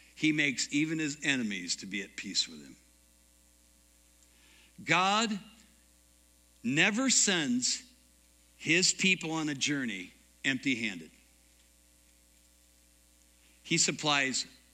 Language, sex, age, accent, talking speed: English, male, 60-79, American, 90 wpm